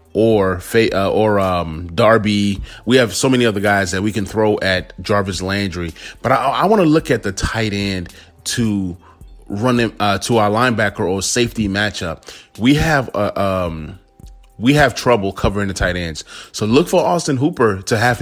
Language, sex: English, male